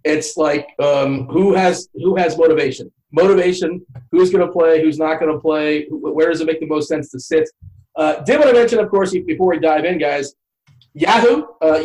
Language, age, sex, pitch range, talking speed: English, 30-49, male, 150-185 Hz, 210 wpm